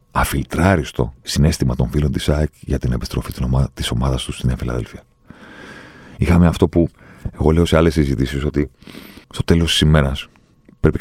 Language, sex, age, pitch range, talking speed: Greek, male, 40-59, 65-85 Hz, 160 wpm